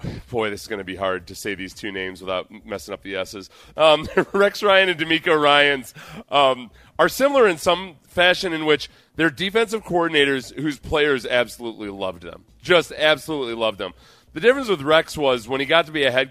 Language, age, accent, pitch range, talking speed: English, 40-59, American, 120-160 Hz, 200 wpm